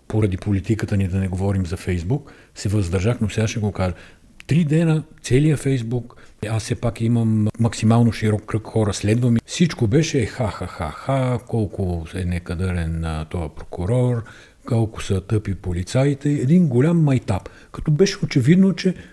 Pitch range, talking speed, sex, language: 95-135 Hz, 145 wpm, male, Bulgarian